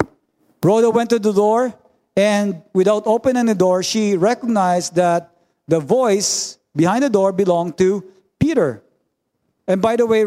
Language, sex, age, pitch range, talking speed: English, male, 50-69, 160-205 Hz, 145 wpm